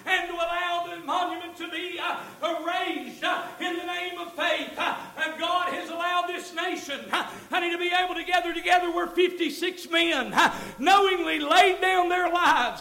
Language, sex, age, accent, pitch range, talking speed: English, male, 50-69, American, 215-335 Hz, 185 wpm